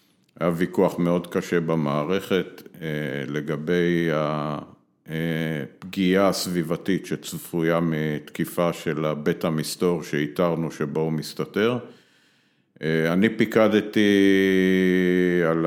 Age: 50-69